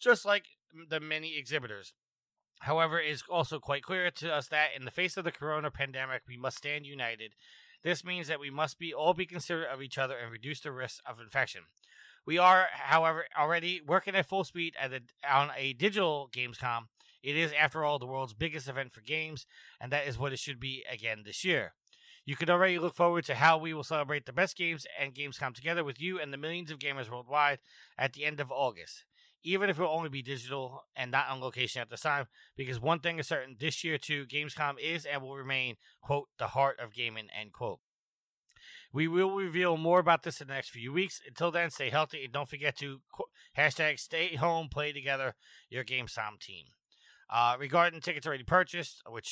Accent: American